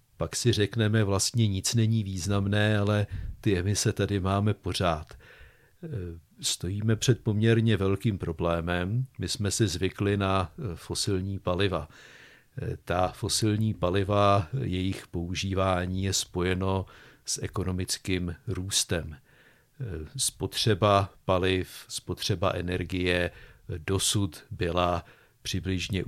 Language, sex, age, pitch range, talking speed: Czech, male, 50-69, 90-110 Hz, 95 wpm